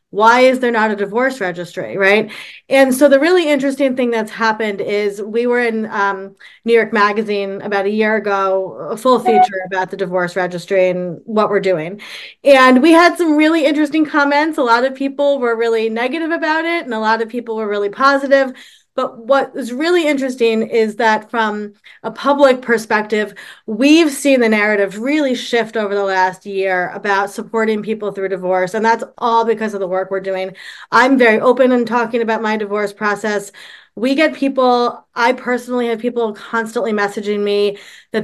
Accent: American